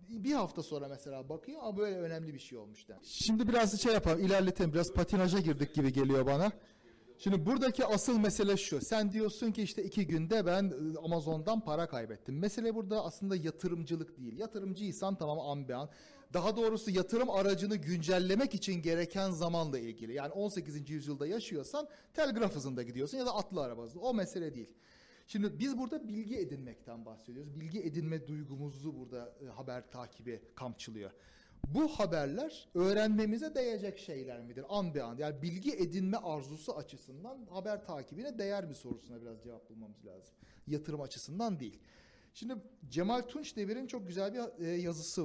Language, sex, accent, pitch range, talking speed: Turkish, male, native, 140-215 Hz, 160 wpm